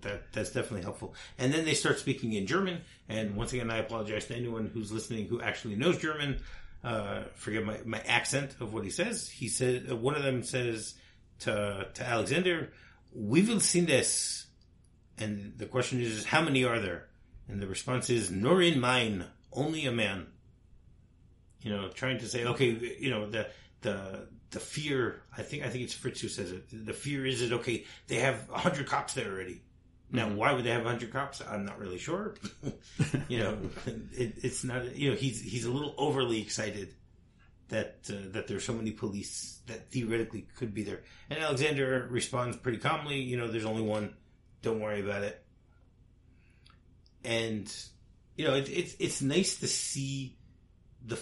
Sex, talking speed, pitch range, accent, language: male, 185 wpm, 105-130 Hz, American, English